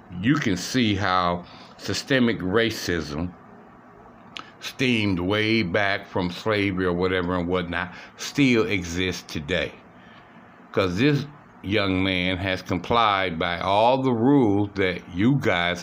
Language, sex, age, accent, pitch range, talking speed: English, male, 60-79, American, 90-120 Hz, 120 wpm